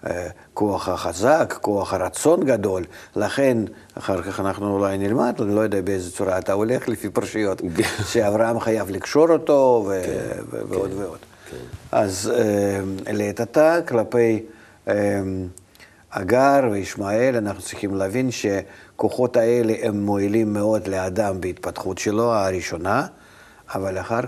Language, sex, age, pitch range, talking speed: Hebrew, male, 50-69, 100-115 Hz, 110 wpm